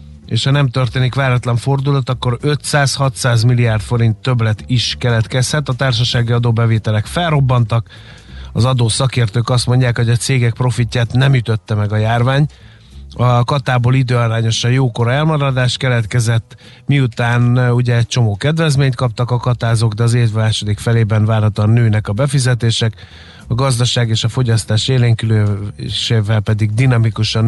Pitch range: 105-125 Hz